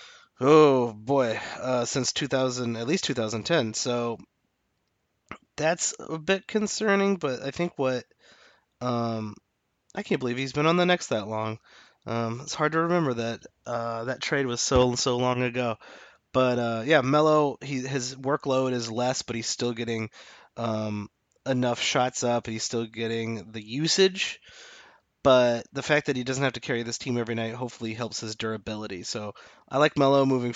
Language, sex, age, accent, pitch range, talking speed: English, male, 30-49, American, 115-140 Hz, 170 wpm